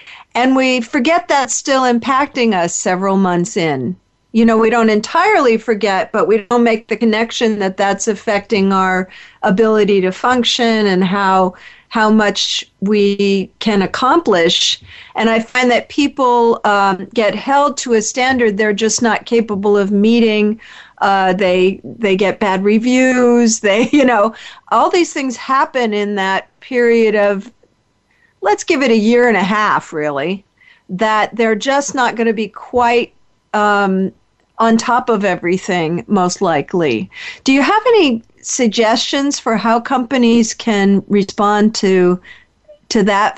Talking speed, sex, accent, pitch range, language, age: 150 wpm, female, American, 195-245 Hz, English, 50-69